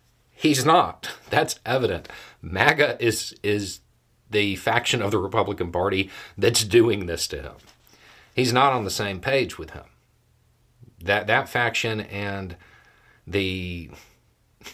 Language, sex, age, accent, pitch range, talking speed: English, male, 50-69, American, 90-115 Hz, 125 wpm